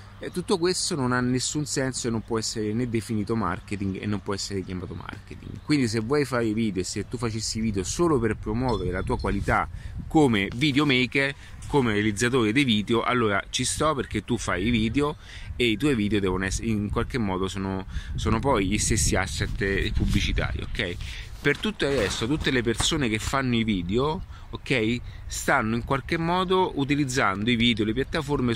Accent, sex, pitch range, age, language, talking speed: native, male, 100-130 Hz, 30-49, Italian, 190 wpm